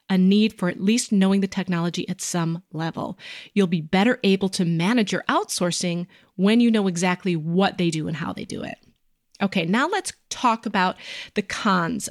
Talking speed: 190 wpm